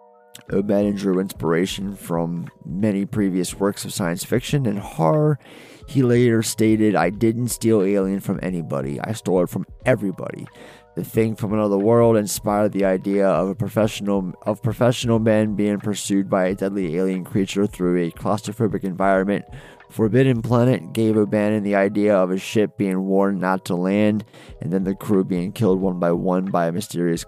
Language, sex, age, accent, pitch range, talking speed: English, male, 30-49, American, 90-110 Hz, 170 wpm